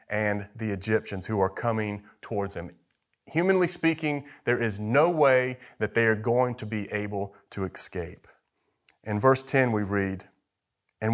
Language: English